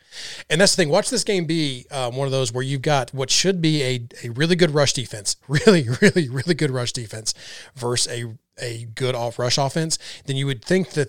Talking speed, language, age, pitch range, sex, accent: 225 wpm, English, 30-49, 120-150 Hz, male, American